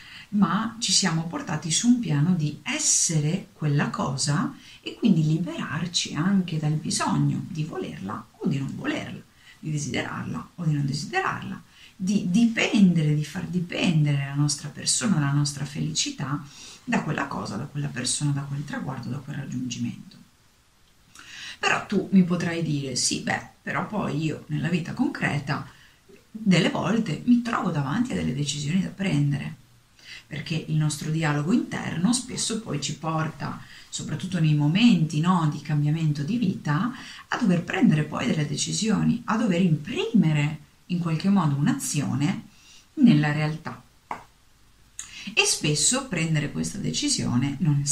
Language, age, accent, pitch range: Italian, 40-59, native, 145-190 Hz